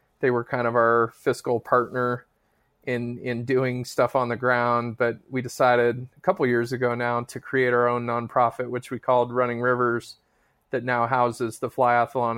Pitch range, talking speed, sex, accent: 120-130 Hz, 180 wpm, male, American